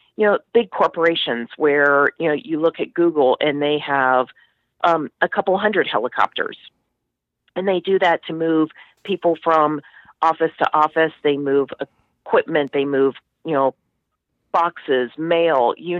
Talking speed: 150 wpm